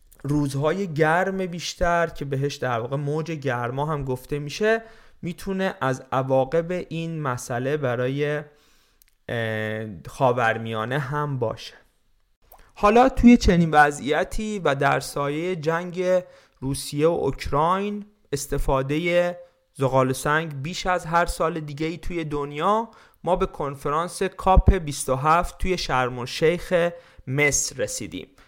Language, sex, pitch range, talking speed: Persian, male, 135-180 Hz, 110 wpm